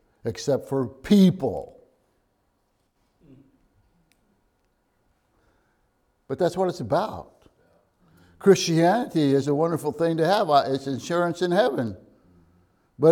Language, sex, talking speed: English, male, 90 wpm